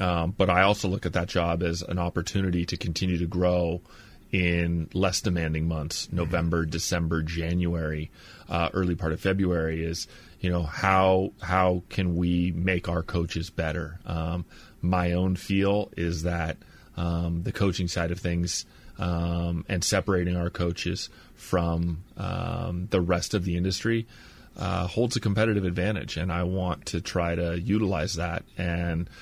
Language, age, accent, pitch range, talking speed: English, 30-49, American, 85-95 Hz, 155 wpm